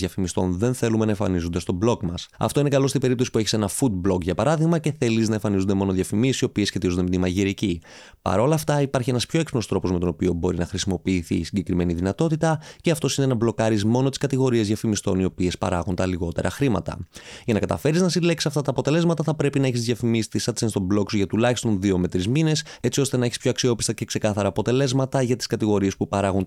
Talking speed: 225 wpm